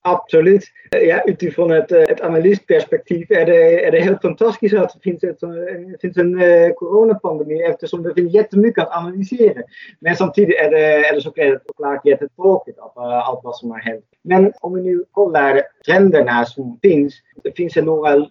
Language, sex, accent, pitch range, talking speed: Swedish, male, Dutch, 140-205 Hz, 165 wpm